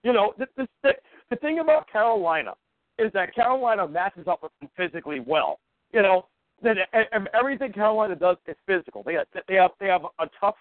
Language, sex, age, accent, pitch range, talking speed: English, male, 50-69, American, 175-240 Hz, 185 wpm